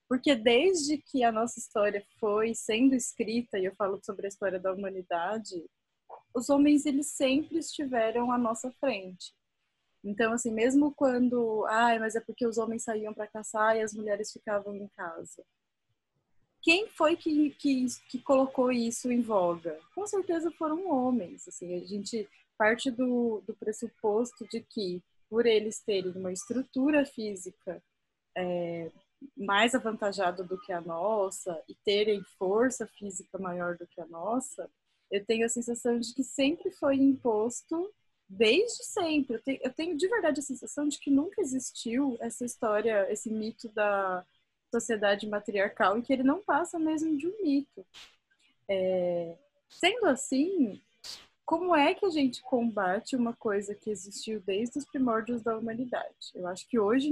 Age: 20-39